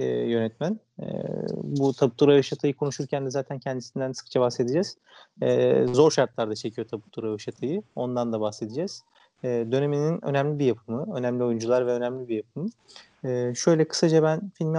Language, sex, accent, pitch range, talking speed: Turkish, male, native, 115-140 Hz, 155 wpm